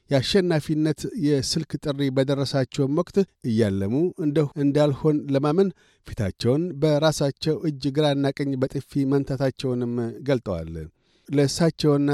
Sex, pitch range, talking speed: male, 115-140 Hz, 90 wpm